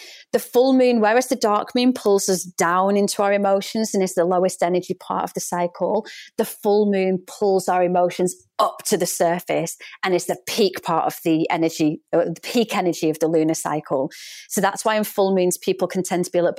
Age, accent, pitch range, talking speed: 30-49, British, 180-255 Hz, 220 wpm